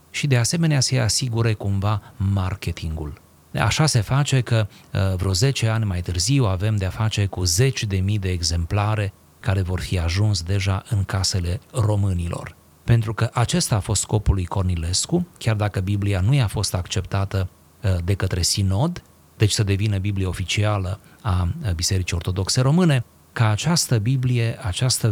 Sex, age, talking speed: male, 30-49, 155 wpm